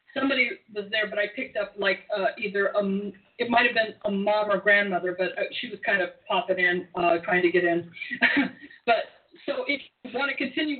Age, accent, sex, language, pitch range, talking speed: 40-59, American, female, English, 200-280 Hz, 210 wpm